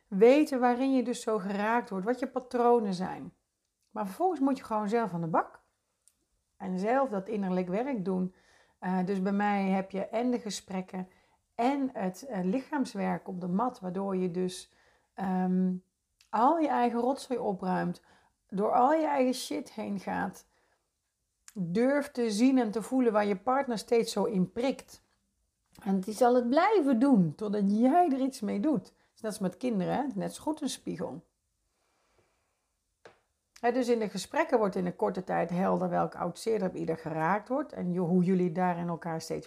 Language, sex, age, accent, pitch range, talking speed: Dutch, female, 40-59, Dutch, 185-245 Hz, 175 wpm